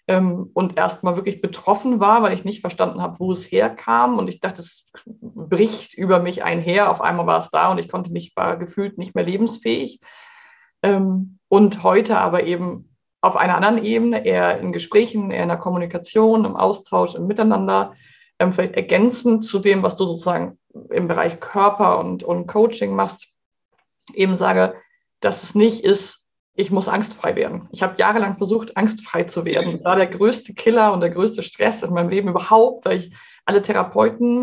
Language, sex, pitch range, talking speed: German, female, 180-220 Hz, 180 wpm